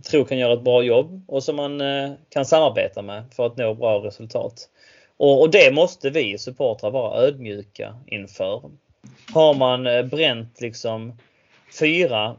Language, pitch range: Swedish, 110-145 Hz